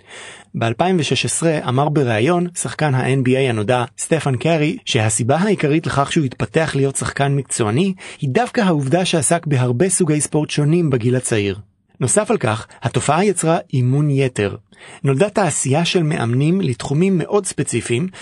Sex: male